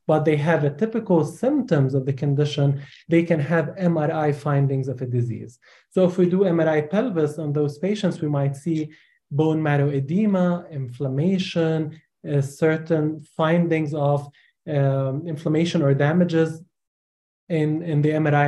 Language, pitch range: English, 140-175 Hz